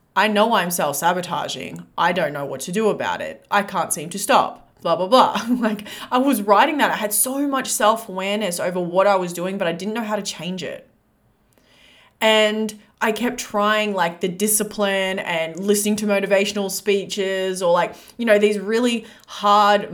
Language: English